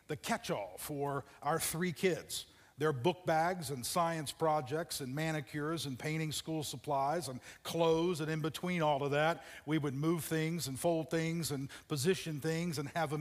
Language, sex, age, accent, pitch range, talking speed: English, male, 50-69, American, 125-160 Hz, 175 wpm